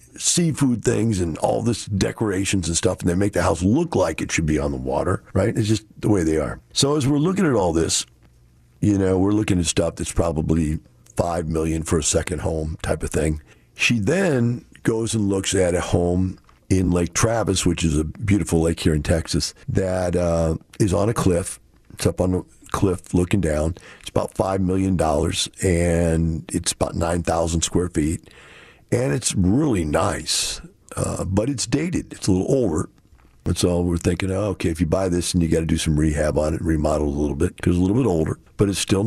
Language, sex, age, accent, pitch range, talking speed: English, male, 50-69, American, 85-105 Hz, 215 wpm